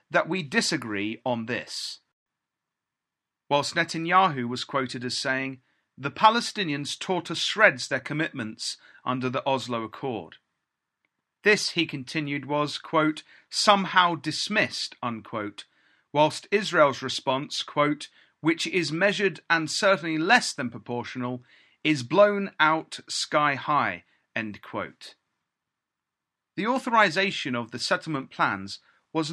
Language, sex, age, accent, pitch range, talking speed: English, male, 40-59, British, 130-200 Hz, 115 wpm